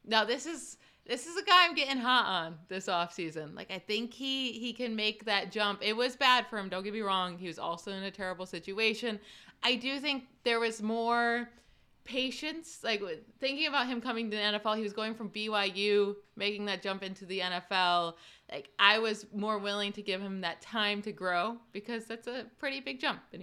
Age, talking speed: 20-39, 215 wpm